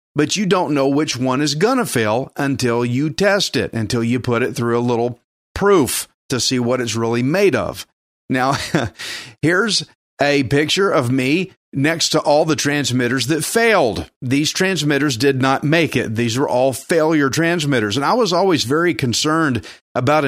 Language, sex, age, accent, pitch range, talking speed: English, male, 40-59, American, 120-160 Hz, 180 wpm